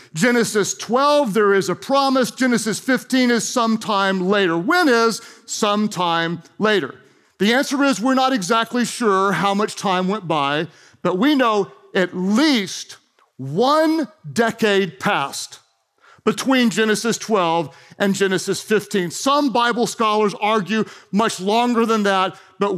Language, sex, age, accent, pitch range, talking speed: English, male, 40-59, American, 195-275 Hz, 130 wpm